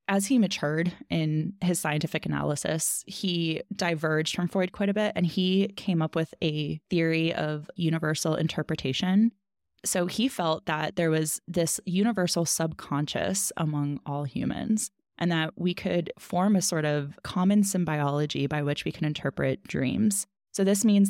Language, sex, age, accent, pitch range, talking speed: English, female, 20-39, American, 150-185 Hz, 155 wpm